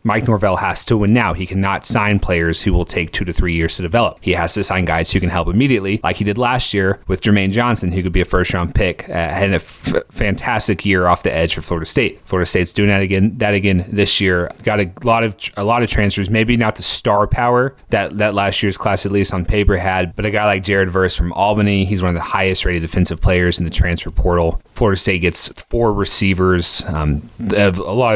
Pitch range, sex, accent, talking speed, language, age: 85-105 Hz, male, American, 250 wpm, English, 30-49